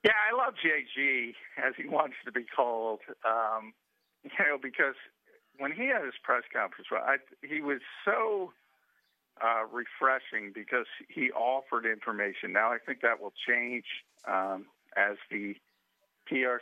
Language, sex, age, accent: English, male, 50-69, American